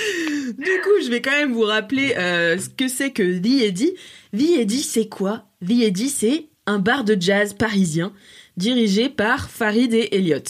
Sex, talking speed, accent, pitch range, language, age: female, 185 wpm, French, 180-235 Hz, French, 20-39